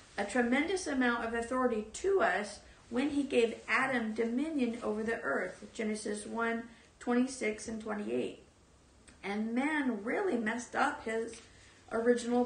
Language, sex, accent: English, female, American